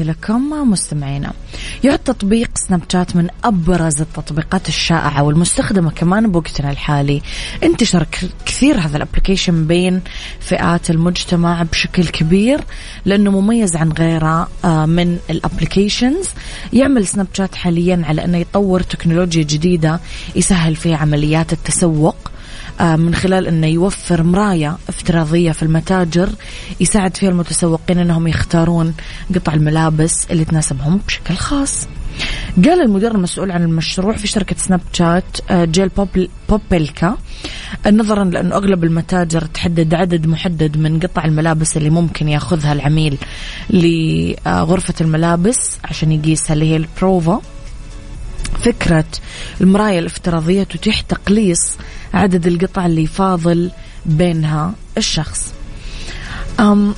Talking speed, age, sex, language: 110 wpm, 20-39, female, English